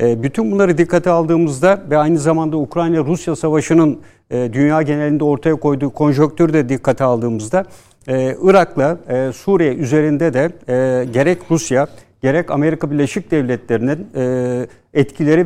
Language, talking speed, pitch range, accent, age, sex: Turkish, 110 wpm, 140-170 Hz, native, 60-79, male